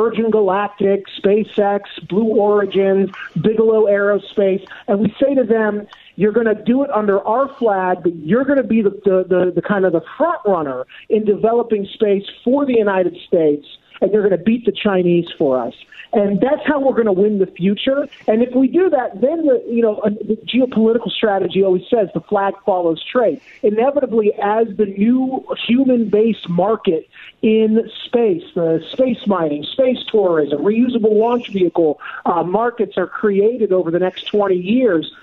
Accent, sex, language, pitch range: American, male, English, 190-235 Hz